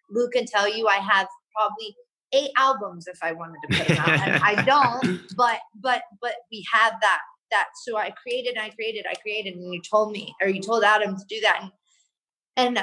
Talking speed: 215 wpm